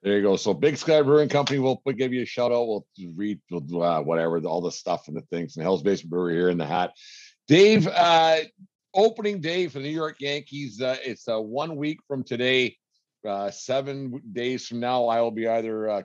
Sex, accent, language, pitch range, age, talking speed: male, American, English, 105-135 Hz, 50-69, 230 wpm